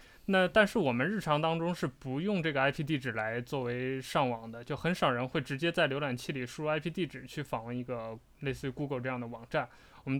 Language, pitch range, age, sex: Chinese, 130-165 Hz, 20-39, male